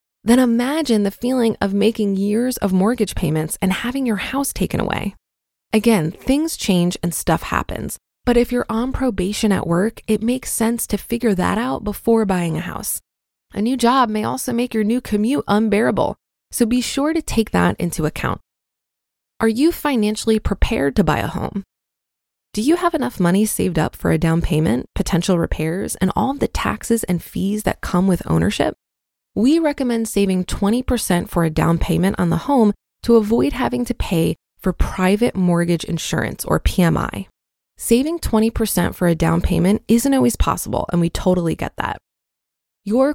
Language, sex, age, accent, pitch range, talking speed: English, female, 20-39, American, 180-235 Hz, 175 wpm